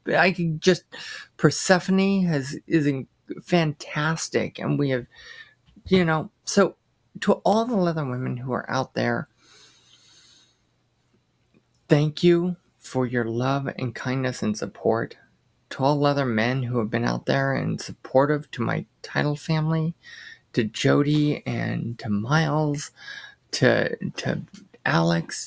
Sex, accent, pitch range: male, American, 130-165 Hz